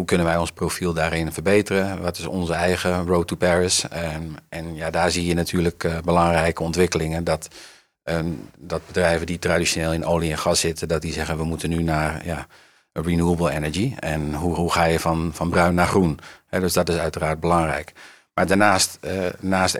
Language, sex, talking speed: Dutch, male, 190 wpm